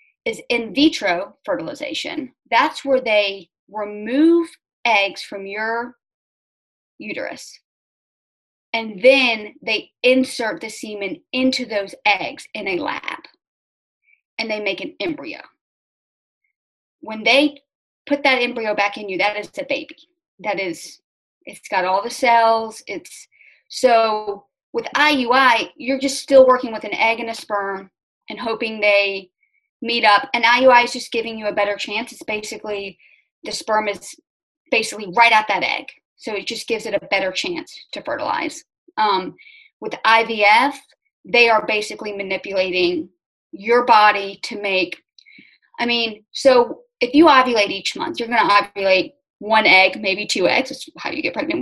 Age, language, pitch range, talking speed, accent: 30-49, English, 210-275 Hz, 150 wpm, American